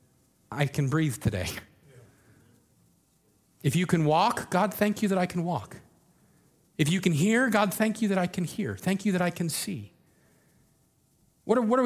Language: English